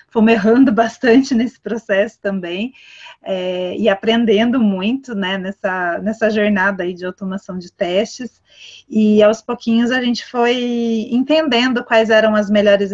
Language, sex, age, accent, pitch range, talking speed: Portuguese, female, 30-49, Brazilian, 200-245 Hz, 130 wpm